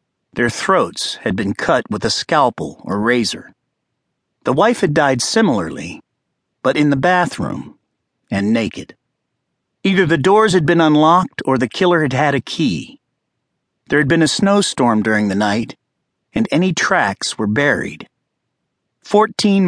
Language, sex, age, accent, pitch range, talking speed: English, male, 50-69, American, 125-170 Hz, 145 wpm